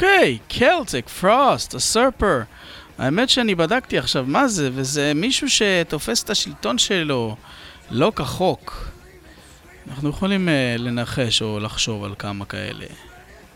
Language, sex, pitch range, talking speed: Hebrew, male, 110-165 Hz, 120 wpm